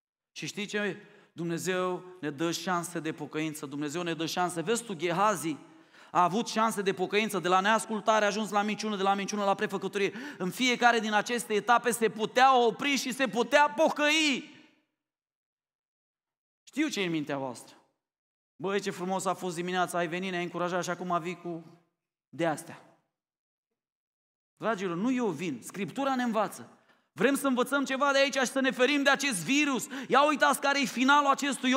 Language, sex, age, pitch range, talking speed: Romanian, male, 30-49, 180-275 Hz, 170 wpm